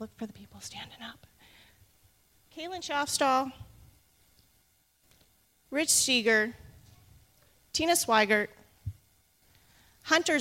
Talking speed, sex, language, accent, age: 75 wpm, female, English, American, 30-49